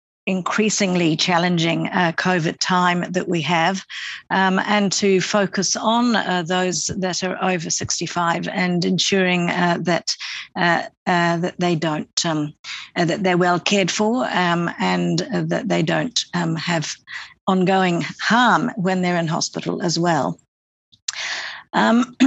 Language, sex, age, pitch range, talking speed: English, female, 50-69, 175-205 Hz, 140 wpm